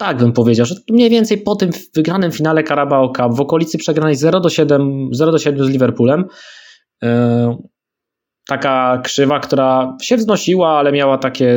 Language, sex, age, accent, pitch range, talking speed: Polish, male, 20-39, native, 125-150 Hz, 140 wpm